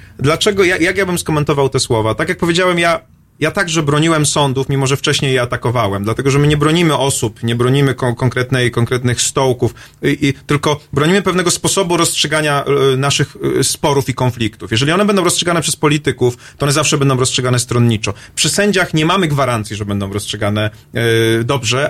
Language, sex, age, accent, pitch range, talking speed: Polish, male, 30-49, native, 120-155 Hz, 185 wpm